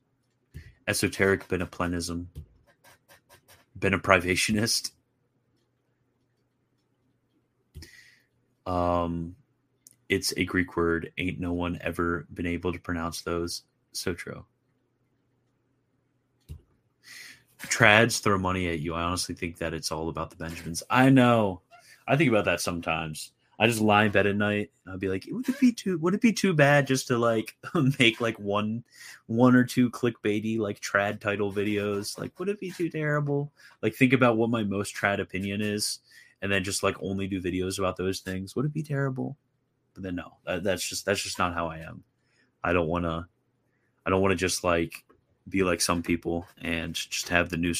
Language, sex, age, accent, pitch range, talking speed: English, male, 30-49, American, 85-125 Hz, 170 wpm